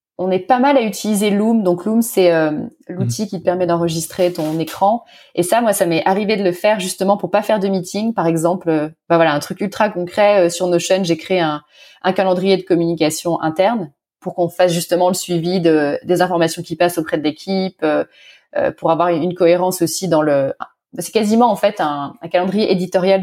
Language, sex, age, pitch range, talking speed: French, female, 20-39, 165-195 Hz, 215 wpm